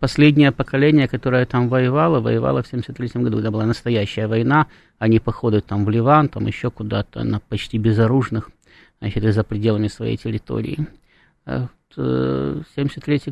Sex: male